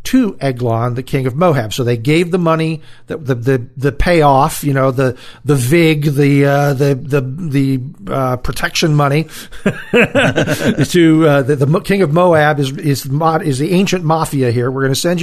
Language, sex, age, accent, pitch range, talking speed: English, male, 50-69, American, 130-160 Hz, 185 wpm